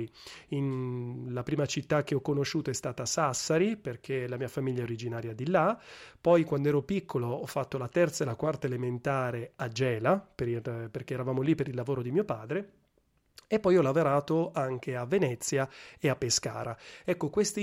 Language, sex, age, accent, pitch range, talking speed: Italian, male, 30-49, native, 130-175 Hz, 175 wpm